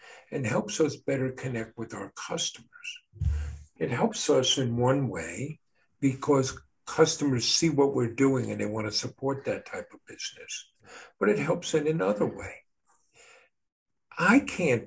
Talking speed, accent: 145 wpm, American